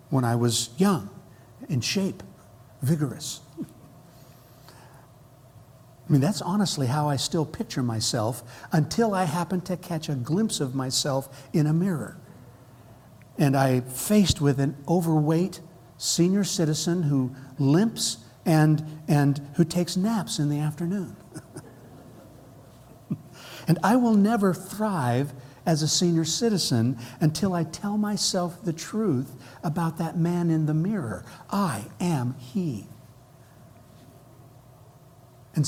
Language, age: English, 60-79